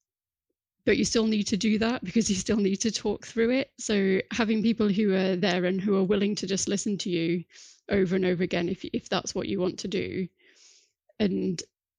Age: 30-49